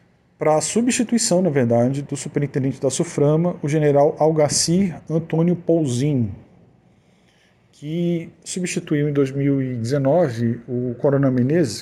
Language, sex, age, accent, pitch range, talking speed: Portuguese, male, 40-59, Brazilian, 125-170 Hz, 105 wpm